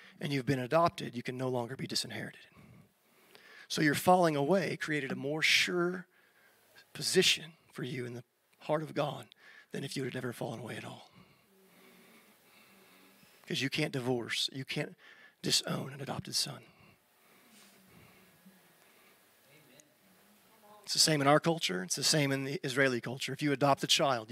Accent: American